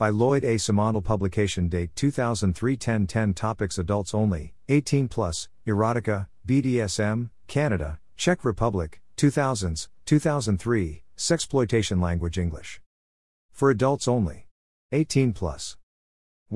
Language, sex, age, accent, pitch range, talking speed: English, male, 50-69, American, 85-115 Hz, 100 wpm